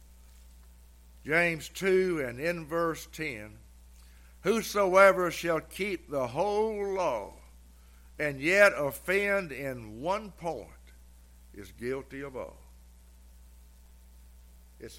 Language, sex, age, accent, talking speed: English, male, 60-79, American, 90 wpm